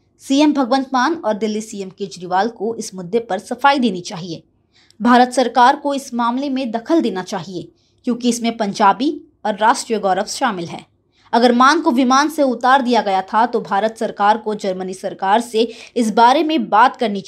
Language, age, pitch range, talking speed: Hindi, 20-39, 190-250 Hz, 75 wpm